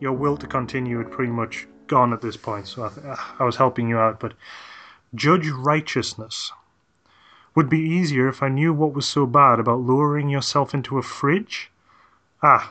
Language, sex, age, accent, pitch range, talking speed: English, male, 30-49, British, 120-145 Hz, 180 wpm